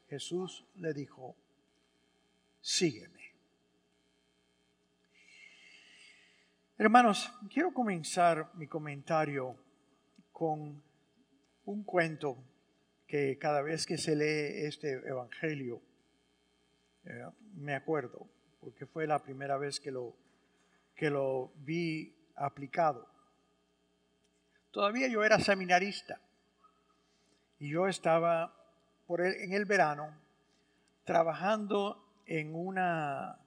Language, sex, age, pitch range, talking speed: English, male, 50-69, 105-170 Hz, 85 wpm